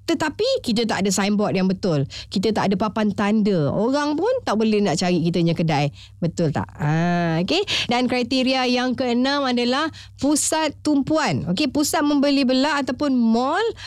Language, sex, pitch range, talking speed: Malay, female, 180-250 Hz, 160 wpm